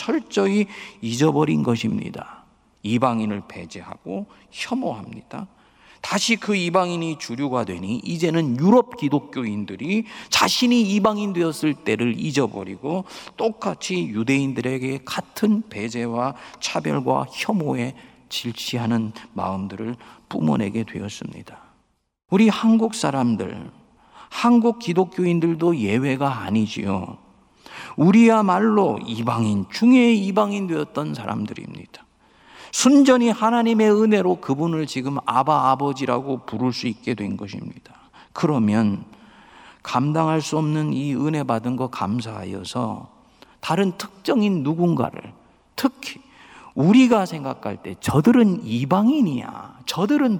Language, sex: Korean, male